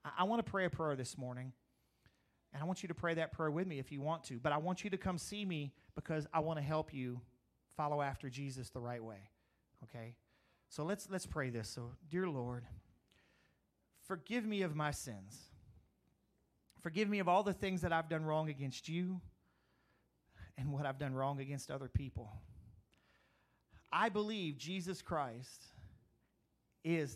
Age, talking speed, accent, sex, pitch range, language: 40-59, 180 wpm, American, male, 125-165 Hz, English